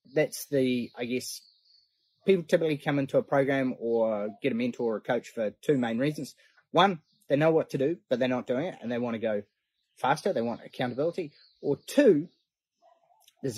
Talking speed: 195 wpm